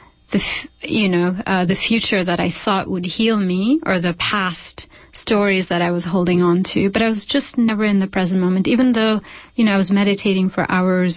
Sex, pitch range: female, 180-210 Hz